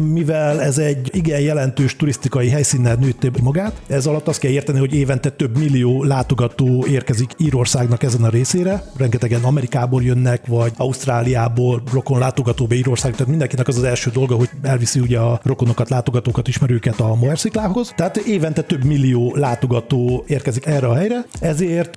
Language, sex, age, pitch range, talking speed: Hungarian, male, 40-59, 125-155 Hz, 155 wpm